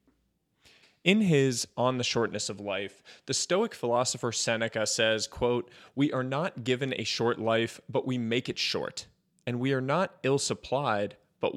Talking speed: 160 wpm